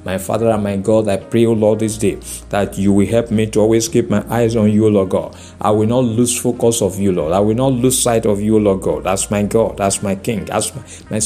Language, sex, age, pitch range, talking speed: English, male, 50-69, 105-145 Hz, 270 wpm